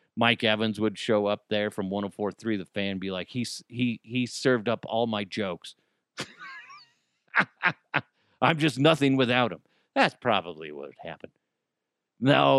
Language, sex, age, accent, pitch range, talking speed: English, male, 40-59, American, 120-175 Hz, 150 wpm